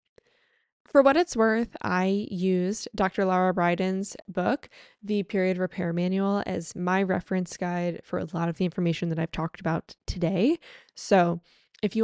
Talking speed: 160 wpm